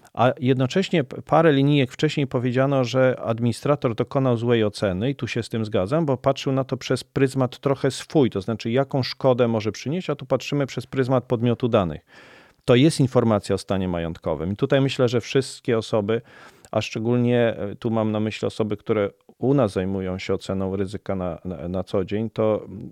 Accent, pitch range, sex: native, 110-135 Hz, male